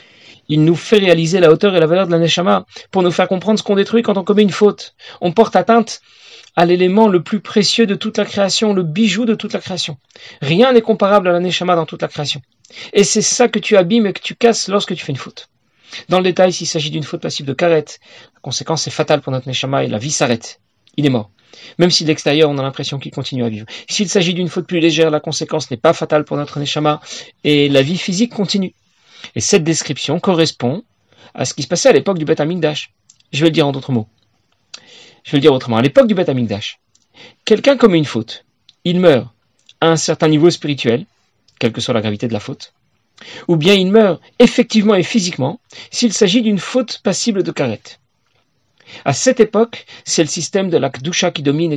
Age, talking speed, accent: 40-59, 225 wpm, French